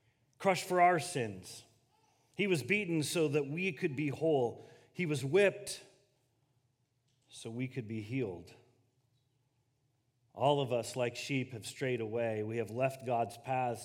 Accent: American